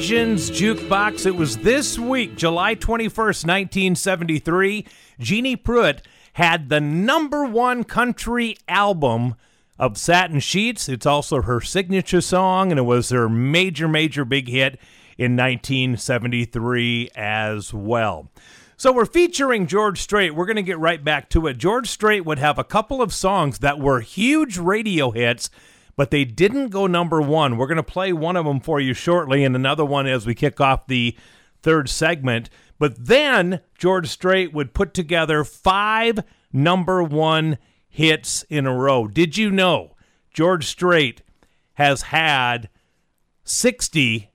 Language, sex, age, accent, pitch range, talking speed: English, male, 40-59, American, 125-190 Hz, 150 wpm